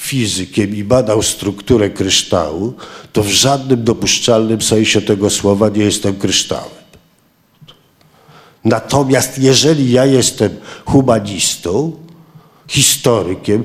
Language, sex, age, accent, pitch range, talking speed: Polish, male, 50-69, native, 115-150 Hz, 90 wpm